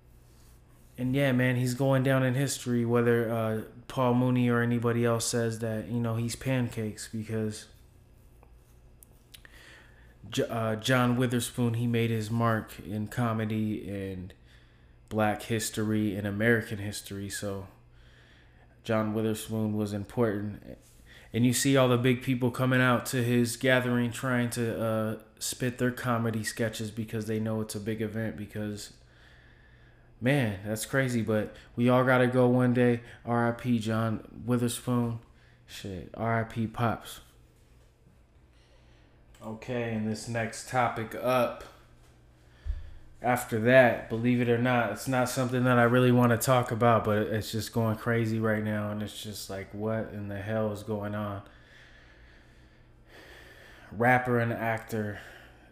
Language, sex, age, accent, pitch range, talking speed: English, male, 20-39, American, 105-120 Hz, 140 wpm